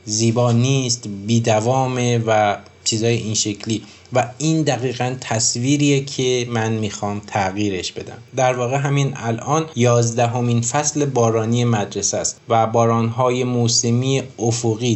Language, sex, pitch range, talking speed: Persian, male, 110-135 Hz, 115 wpm